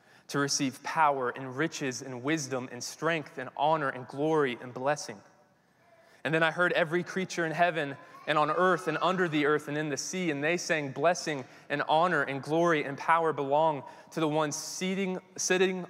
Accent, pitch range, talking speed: American, 135-180 Hz, 185 wpm